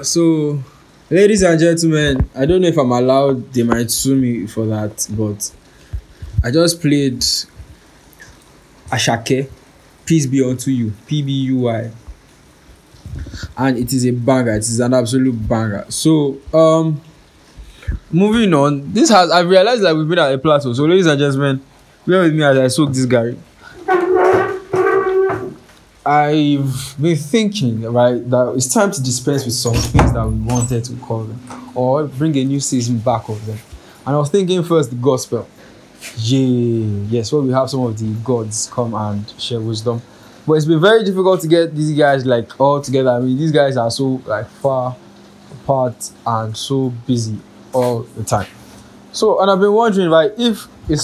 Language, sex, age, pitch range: English, male, 10-29, 120-155 Hz